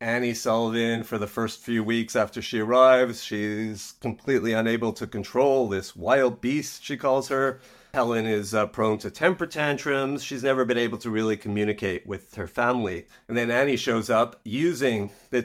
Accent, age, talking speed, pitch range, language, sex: American, 40-59, 175 wpm, 105-125 Hz, English, male